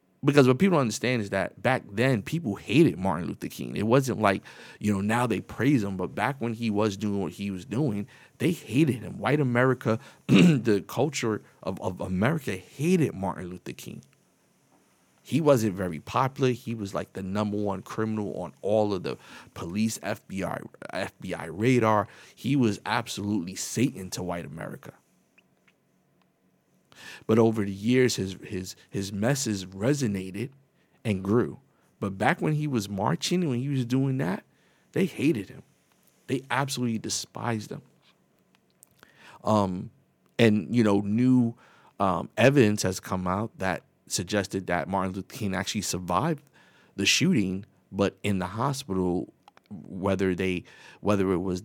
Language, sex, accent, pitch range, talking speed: English, male, American, 95-125 Hz, 150 wpm